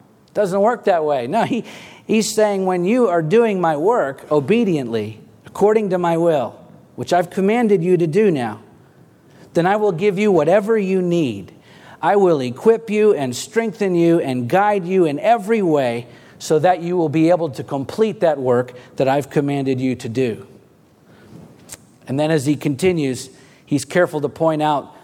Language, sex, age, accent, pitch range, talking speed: English, male, 50-69, American, 135-185 Hz, 175 wpm